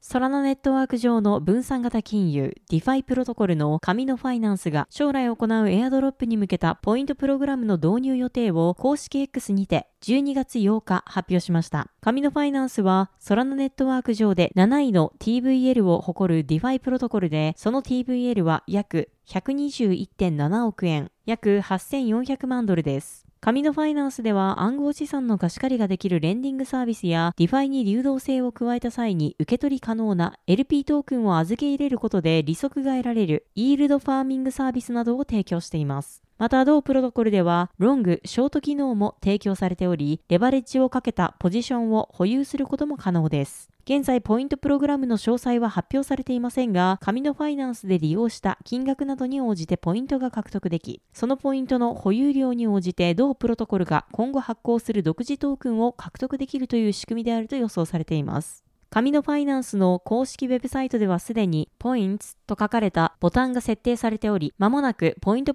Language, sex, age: Japanese, female, 20-39